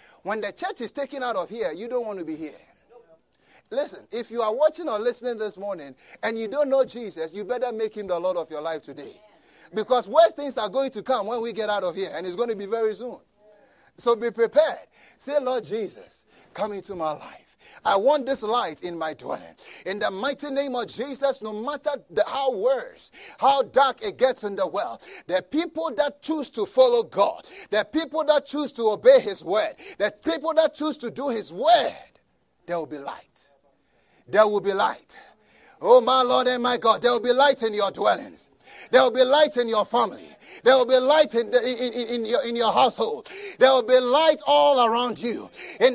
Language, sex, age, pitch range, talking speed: English, male, 30-49, 235-315 Hz, 215 wpm